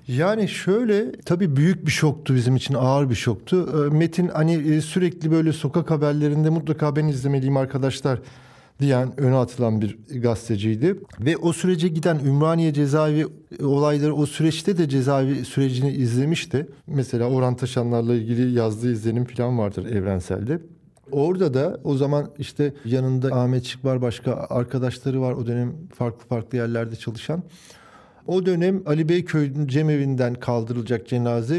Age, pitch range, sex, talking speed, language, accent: 50-69, 125-150 Hz, male, 135 wpm, Turkish, native